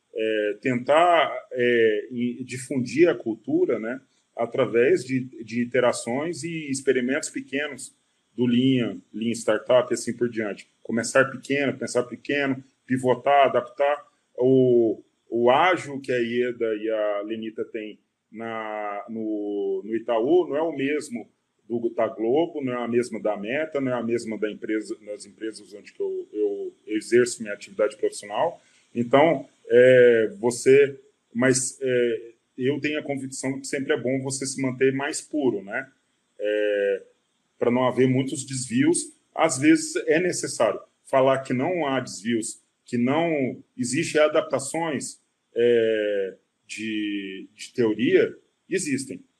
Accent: Brazilian